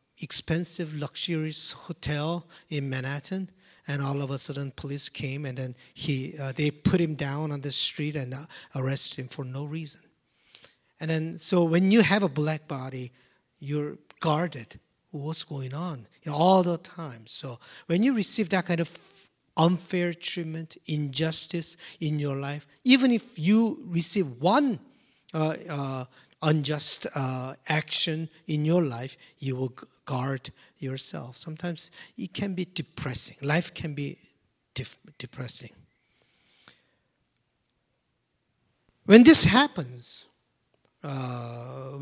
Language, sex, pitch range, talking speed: English, male, 135-175 Hz, 135 wpm